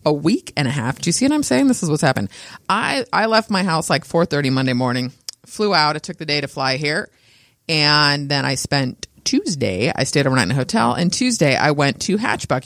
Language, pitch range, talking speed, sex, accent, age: English, 135-175 Hz, 235 wpm, female, American, 30-49